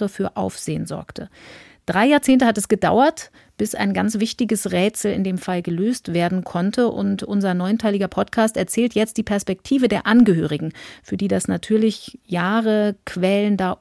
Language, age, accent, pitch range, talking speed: German, 40-59, German, 185-230 Hz, 150 wpm